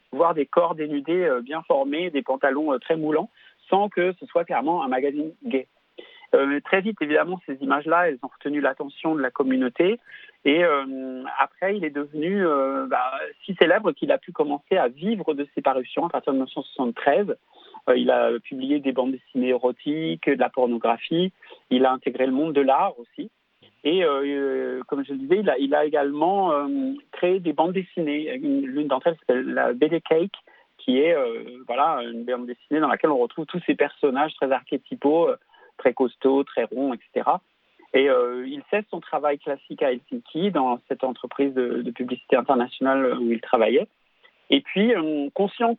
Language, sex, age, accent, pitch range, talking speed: French, male, 40-59, French, 135-195 Hz, 185 wpm